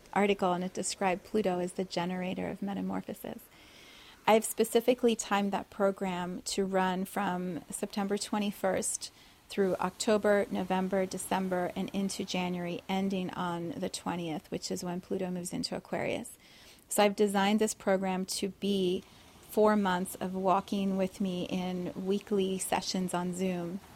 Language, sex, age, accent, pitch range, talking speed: English, female, 30-49, American, 180-205 Hz, 140 wpm